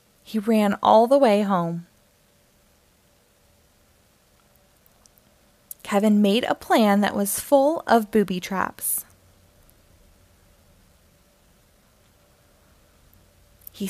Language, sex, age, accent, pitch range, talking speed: English, female, 20-39, American, 180-235 Hz, 75 wpm